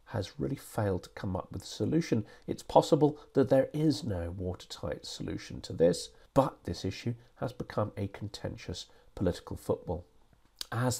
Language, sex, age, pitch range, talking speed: English, male, 40-59, 100-130 Hz, 160 wpm